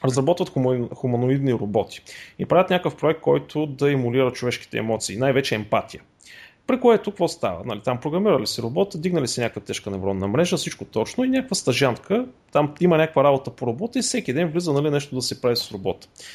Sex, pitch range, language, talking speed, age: male, 125-170 Hz, Bulgarian, 195 wpm, 30-49